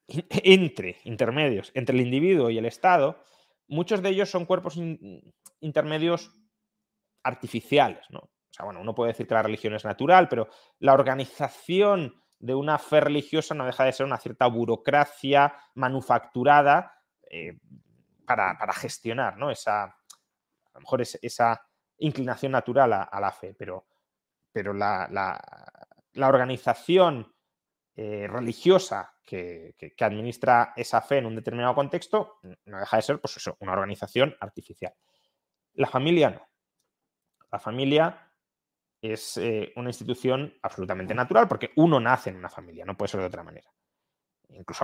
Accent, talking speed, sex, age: Spanish, 150 wpm, male, 30-49